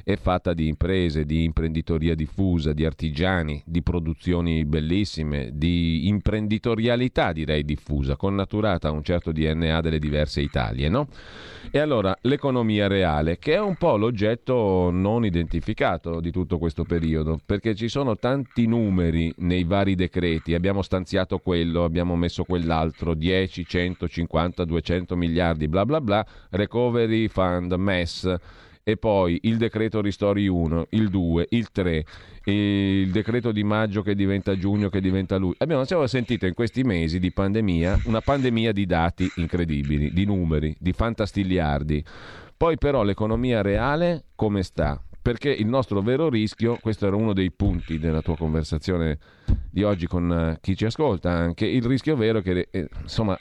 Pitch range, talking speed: 80-105 Hz, 145 wpm